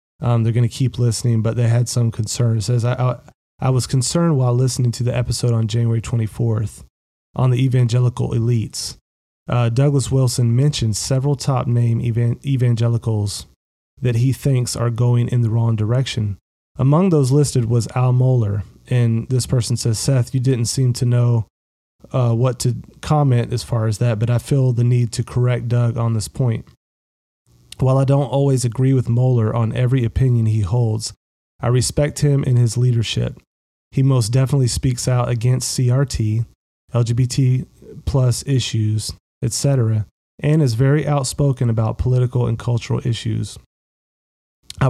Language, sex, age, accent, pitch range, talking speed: English, male, 30-49, American, 115-130 Hz, 165 wpm